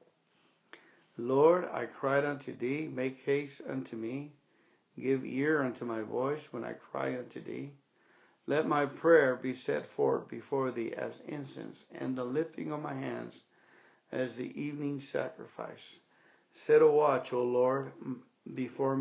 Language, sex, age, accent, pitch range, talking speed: English, male, 60-79, American, 125-150 Hz, 140 wpm